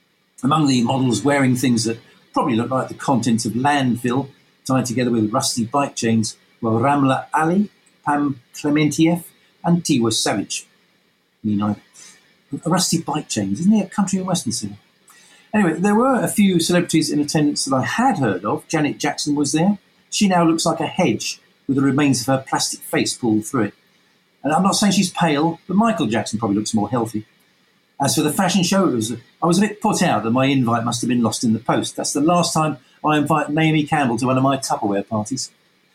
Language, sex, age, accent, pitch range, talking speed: English, male, 50-69, British, 120-175 Hz, 200 wpm